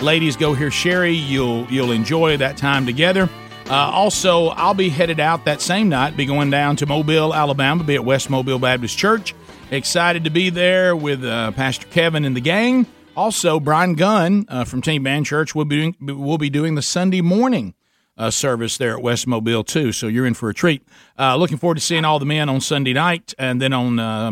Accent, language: American, English